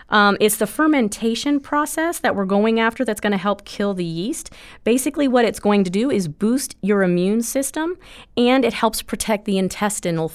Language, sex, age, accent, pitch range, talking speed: English, female, 30-49, American, 175-220 Hz, 190 wpm